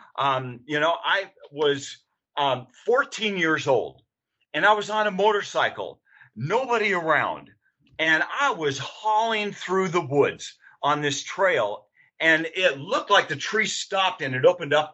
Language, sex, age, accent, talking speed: English, male, 40-59, American, 155 wpm